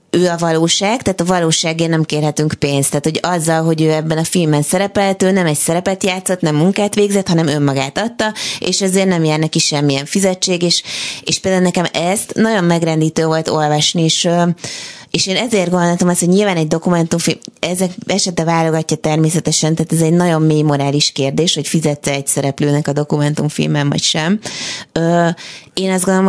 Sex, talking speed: female, 170 wpm